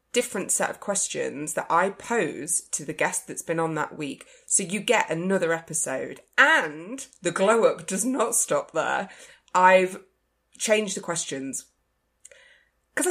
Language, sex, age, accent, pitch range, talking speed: English, female, 20-39, British, 160-255 Hz, 150 wpm